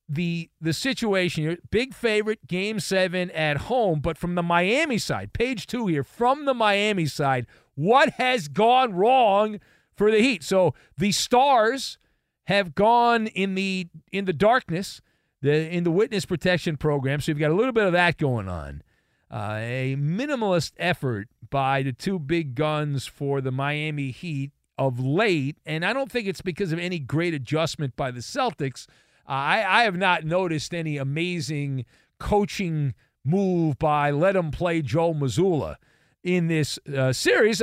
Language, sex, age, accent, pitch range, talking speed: English, male, 50-69, American, 140-200 Hz, 165 wpm